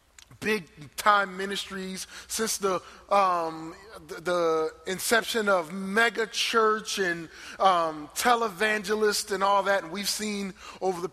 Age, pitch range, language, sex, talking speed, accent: 30-49, 140-195 Hz, English, male, 120 wpm, American